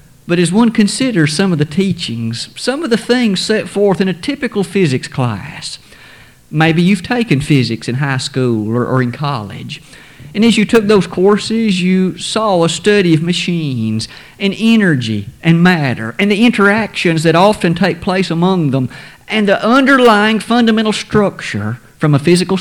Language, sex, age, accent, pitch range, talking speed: English, male, 50-69, American, 140-195 Hz, 165 wpm